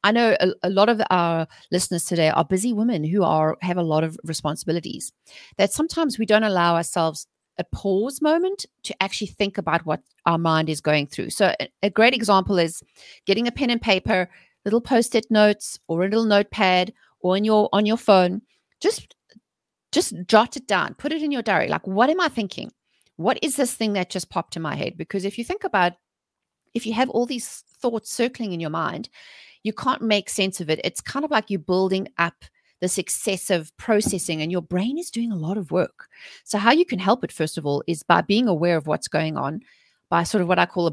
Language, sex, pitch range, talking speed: English, female, 165-225 Hz, 220 wpm